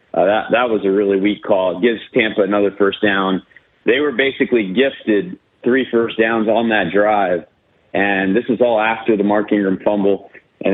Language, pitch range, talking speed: English, 100-115 Hz, 190 wpm